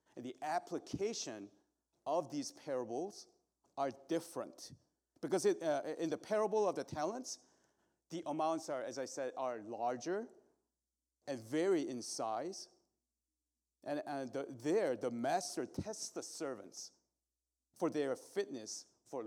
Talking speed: 125 wpm